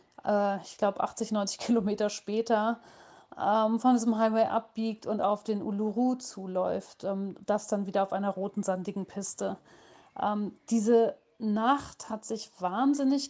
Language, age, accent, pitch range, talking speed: German, 40-59, German, 210-240 Hz, 140 wpm